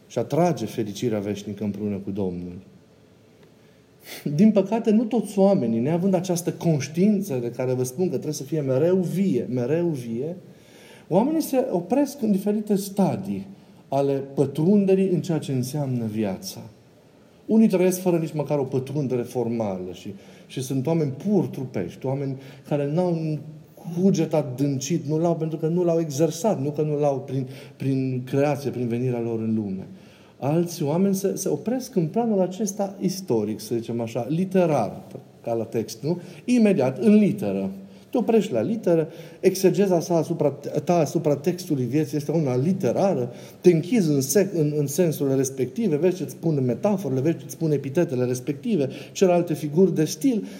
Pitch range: 130-185 Hz